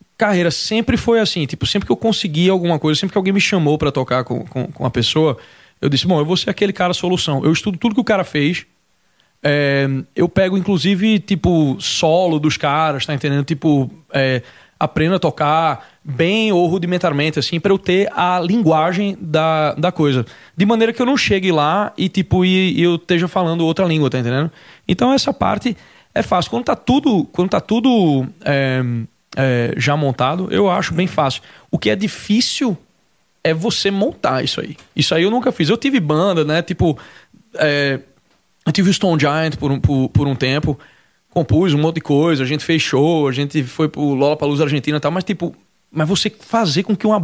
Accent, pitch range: Brazilian, 145-190 Hz